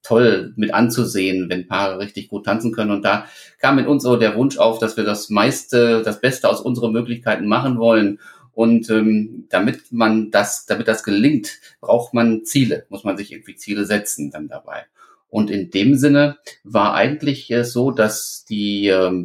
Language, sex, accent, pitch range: German, male, German, 105-120 Hz